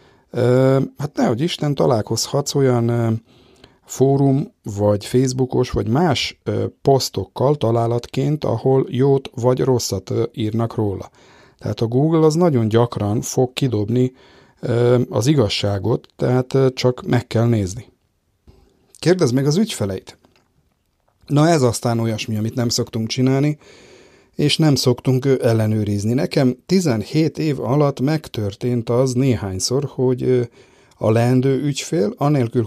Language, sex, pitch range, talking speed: Hungarian, male, 110-135 Hz, 115 wpm